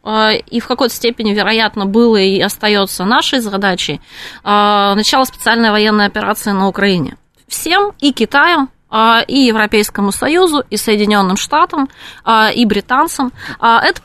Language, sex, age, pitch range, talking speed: Russian, female, 20-39, 205-250 Hz, 120 wpm